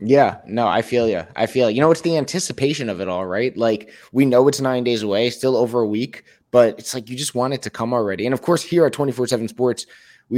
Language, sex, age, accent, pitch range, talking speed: English, male, 20-39, American, 110-130 Hz, 265 wpm